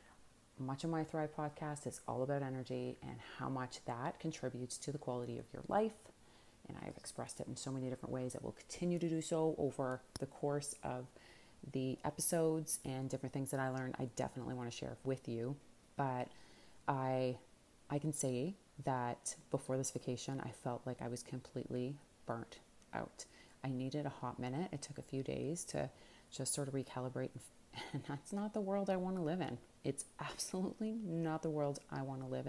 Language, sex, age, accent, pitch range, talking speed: English, female, 30-49, American, 125-145 Hz, 195 wpm